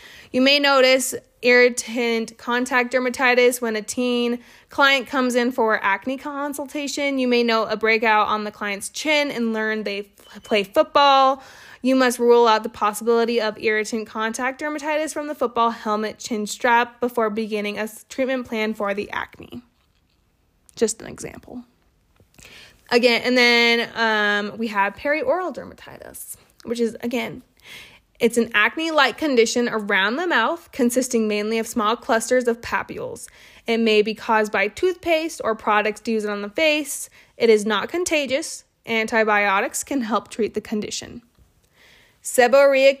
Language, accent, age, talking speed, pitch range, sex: English, American, 20-39, 150 wpm, 215-255 Hz, female